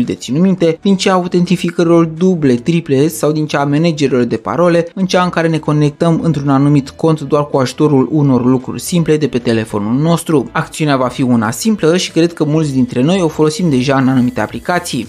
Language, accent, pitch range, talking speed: Romanian, native, 135-175 Hz, 200 wpm